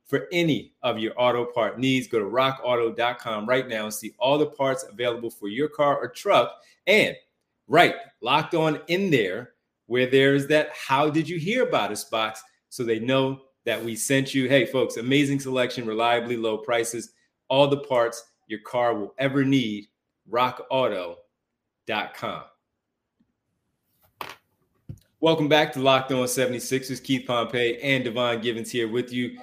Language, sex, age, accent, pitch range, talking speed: English, male, 30-49, American, 115-135 Hz, 155 wpm